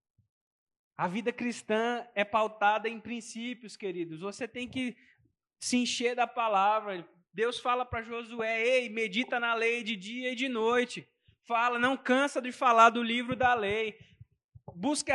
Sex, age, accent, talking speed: male, 20-39, Brazilian, 150 wpm